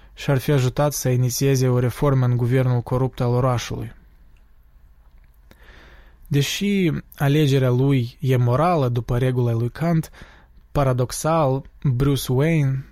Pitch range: 125-140 Hz